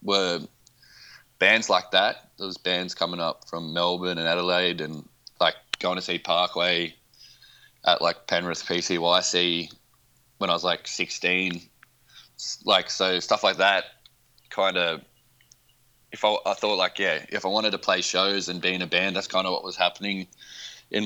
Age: 20-39